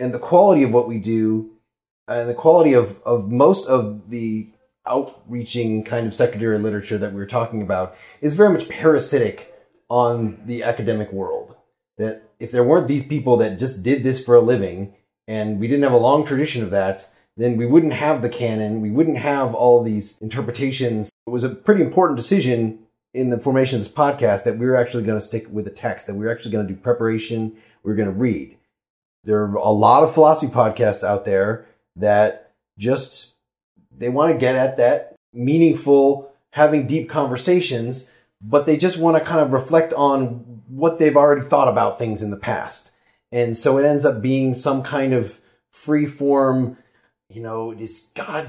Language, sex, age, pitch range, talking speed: English, male, 30-49, 110-145 Hz, 195 wpm